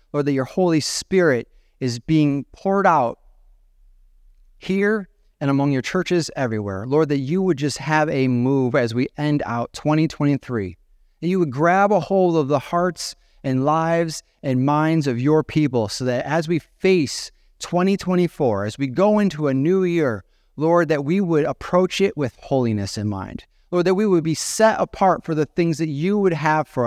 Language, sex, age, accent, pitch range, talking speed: English, male, 30-49, American, 125-170 Hz, 185 wpm